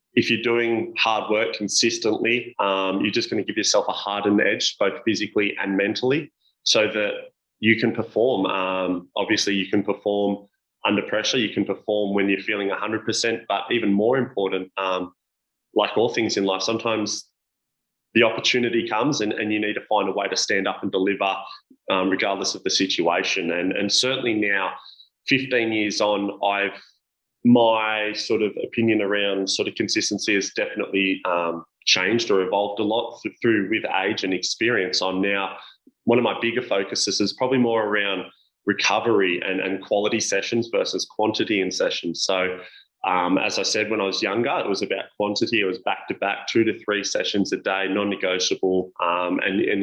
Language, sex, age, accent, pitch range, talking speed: English, male, 20-39, Australian, 95-115 Hz, 180 wpm